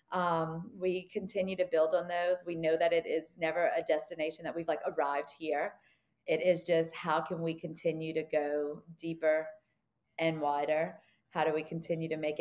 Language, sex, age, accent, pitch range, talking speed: English, female, 30-49, American, 160-180 Hz, 185 wpm